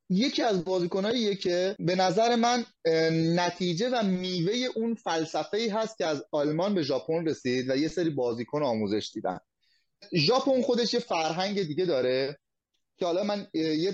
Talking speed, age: 155 wpm, 30-49